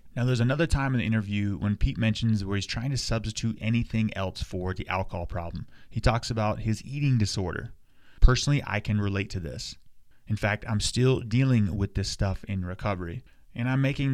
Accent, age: American, 30-49